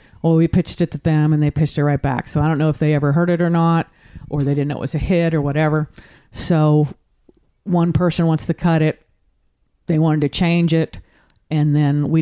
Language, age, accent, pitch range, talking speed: English, 50-69, American, 145-175 Hz, 235 wpm